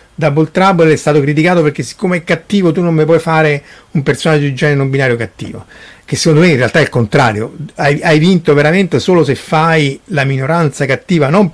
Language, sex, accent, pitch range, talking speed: Italian, male, native, 125-170 Hz, 210 wpm